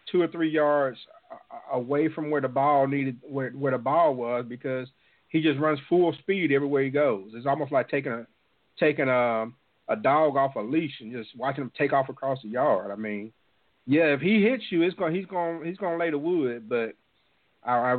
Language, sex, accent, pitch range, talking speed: English, male, American, 110-145 Hz, 215 wpm